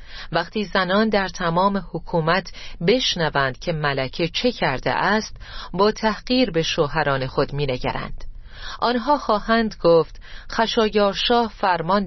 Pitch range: 155-220 Hz